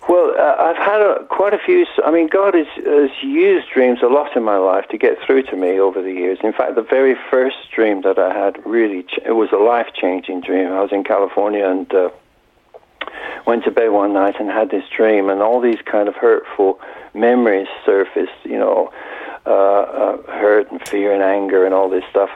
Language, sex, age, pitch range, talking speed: English, male, 60-79, 95-145 Hz, 210 wpm